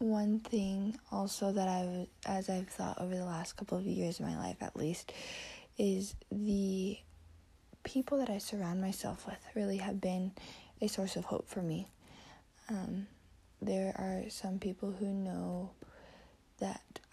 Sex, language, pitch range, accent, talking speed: female, English, 185-215 Hz, American, 155 wpm